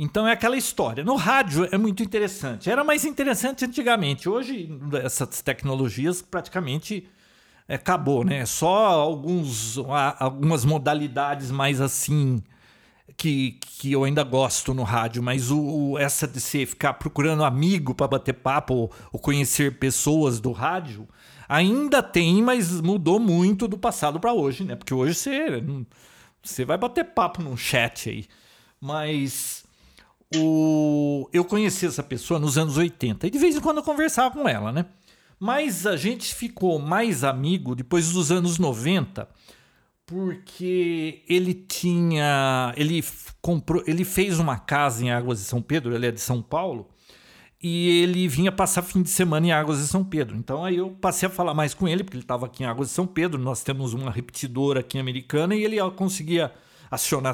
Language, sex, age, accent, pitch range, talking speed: Portuguese, male, 50-69, Brazilian, 135-185 Hz, 165 wpm